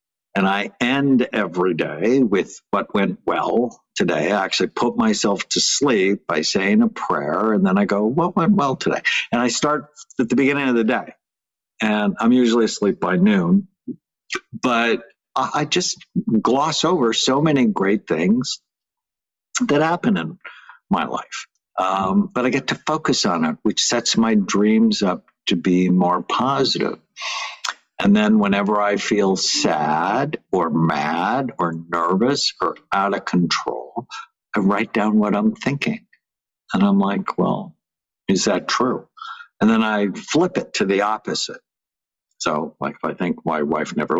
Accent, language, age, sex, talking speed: American, English, 60-79, male, 160 wpm